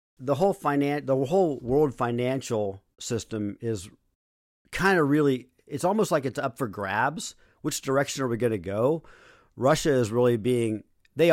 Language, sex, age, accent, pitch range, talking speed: English, male, 50-69, American, 115-135 Hz, 165 wpm